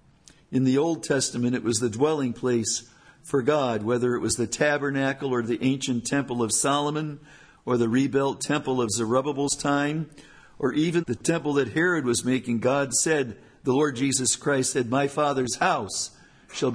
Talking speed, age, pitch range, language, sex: 170 wpm, 50-69, 120-145 Hz, English, male